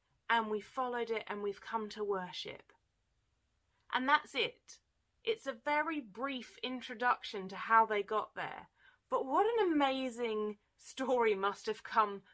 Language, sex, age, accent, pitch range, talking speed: English, female, 30-49, British, 180-245 Hz, 145 wpm